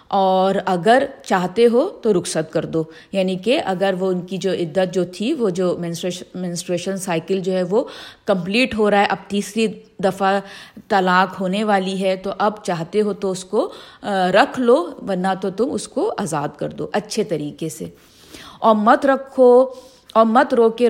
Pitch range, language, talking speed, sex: 185-250 Hz, Urdu, 185 wpm, female